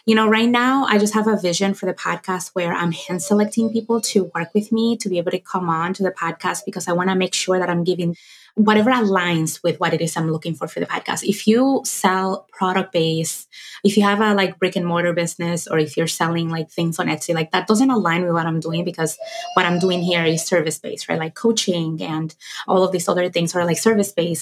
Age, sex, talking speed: 20-39, female, 240 wpm